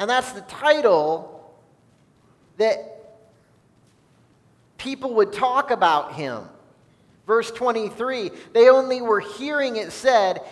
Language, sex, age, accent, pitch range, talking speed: English, male, 40-59, American, 170-235 Hz, 105 wpm